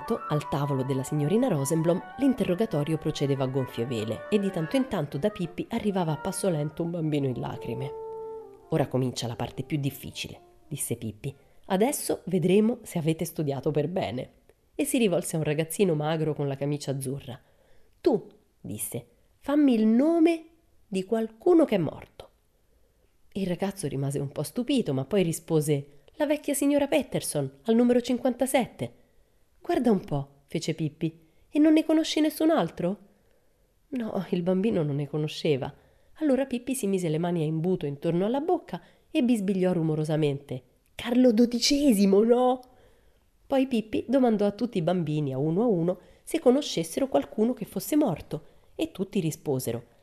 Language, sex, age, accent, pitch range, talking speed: Italian, female, 30-49, native, 150-235 Hz, 155 wpm